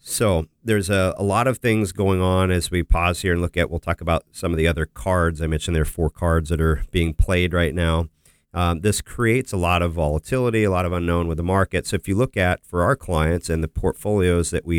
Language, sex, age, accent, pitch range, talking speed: English, male, 40-59, American, 80-90 Hz, 255 wpm